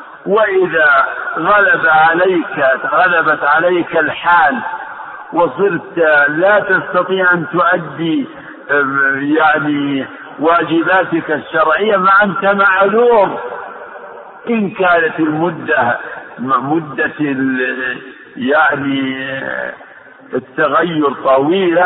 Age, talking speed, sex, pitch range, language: 60-79, 65 wpm, male, 140-185 Hz, Arabic